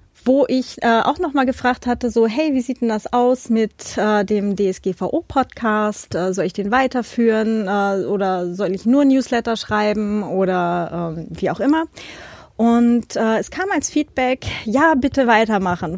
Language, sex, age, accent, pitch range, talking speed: German, female, 30-49, German, 195-250 Hz, 165 wpm